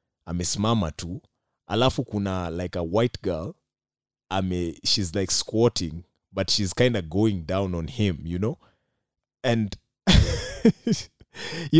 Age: 30-49